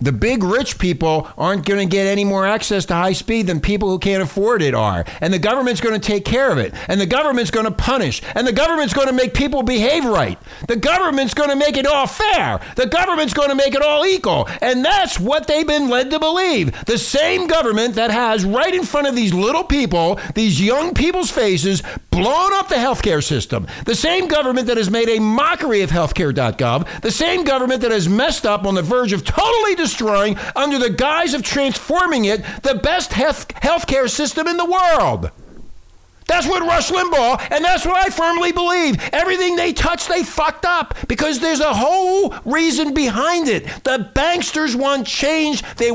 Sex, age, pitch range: male, 60-79, 215-310 Hz